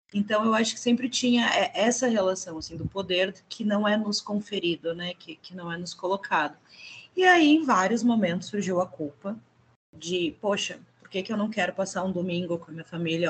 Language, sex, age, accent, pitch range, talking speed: Portuguese, female, 20-39, Brazilian, 165-210 Hz, 210 wpm